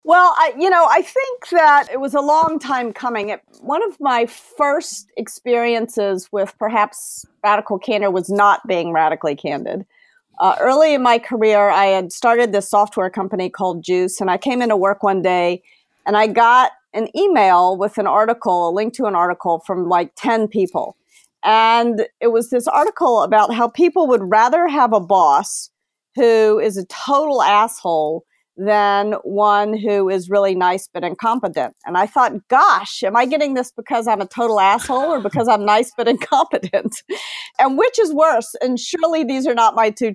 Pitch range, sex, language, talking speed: 195-255 Hz, female, English, 180 wpm